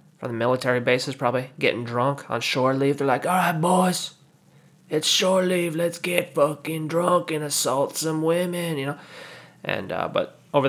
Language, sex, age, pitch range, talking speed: English, male, 20-39, 125-170 Hz, 180 wpm